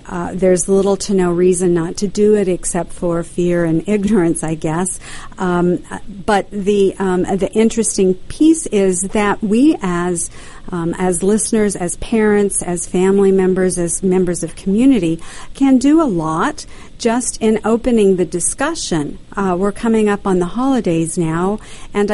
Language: English